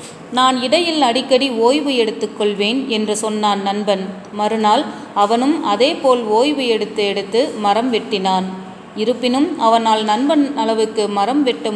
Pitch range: 205-250 Hz